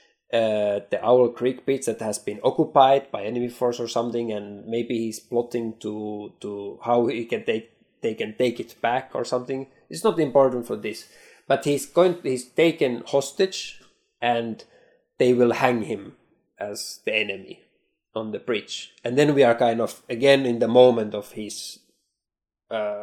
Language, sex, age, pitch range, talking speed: English, male, 20-39, 115-140 Hz, 170 wpm